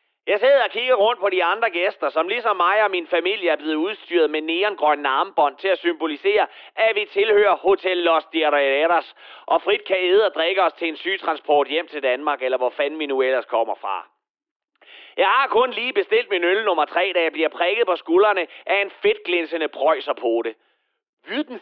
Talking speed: 200 wpm